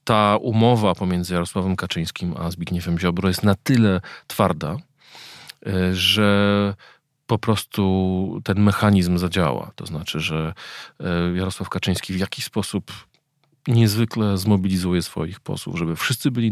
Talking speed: 120 wpm